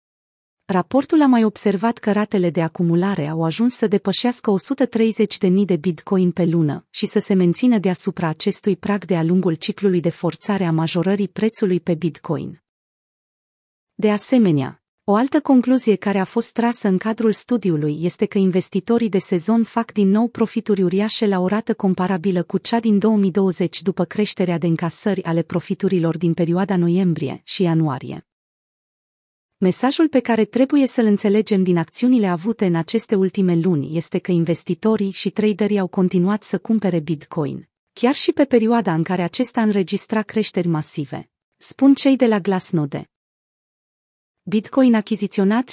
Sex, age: female, 30-49